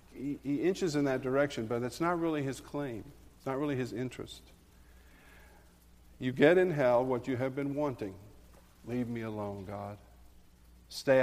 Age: 50-69